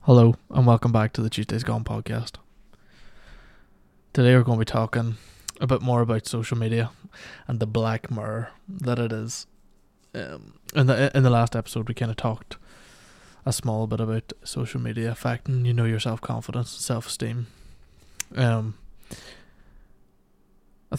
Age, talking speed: 20-39, 160 wpm